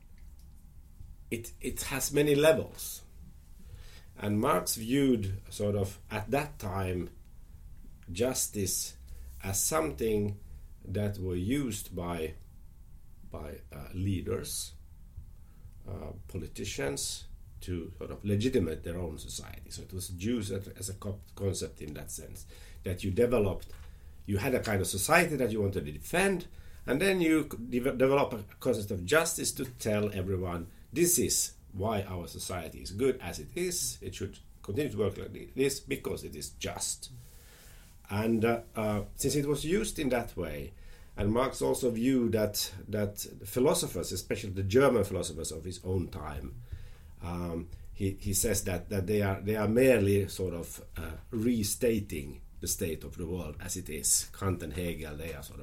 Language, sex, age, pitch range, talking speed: English, male, 50-69, 80-110 Hz, 155 wpm